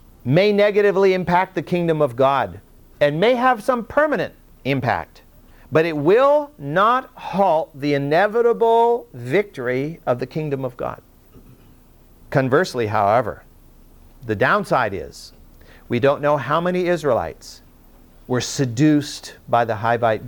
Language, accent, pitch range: English, American, 140-190 Hz